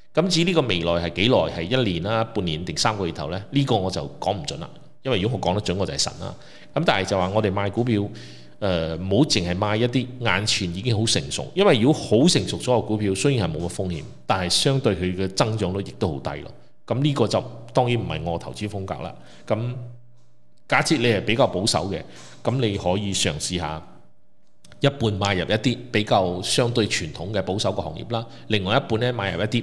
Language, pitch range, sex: Chinese, 90-120 Hz, male